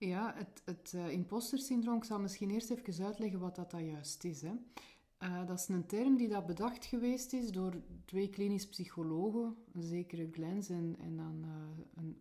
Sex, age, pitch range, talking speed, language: female, 30-49, 160-215 Hz, 190 wpm, Dutch